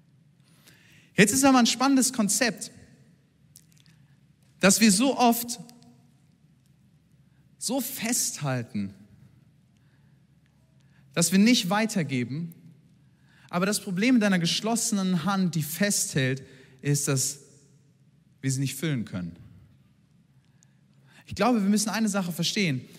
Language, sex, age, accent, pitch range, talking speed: German, male, 40-59, German, 145-185 Hz, 100 wpm